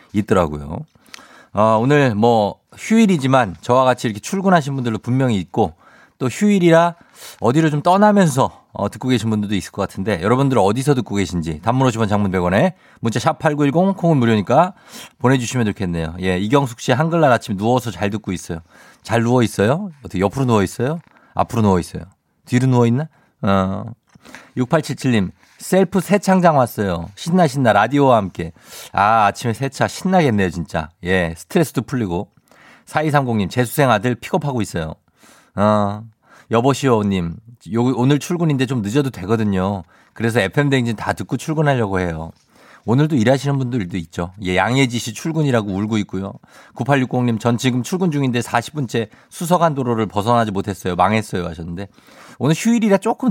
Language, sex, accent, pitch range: Korean, male, native, 100-145 Hz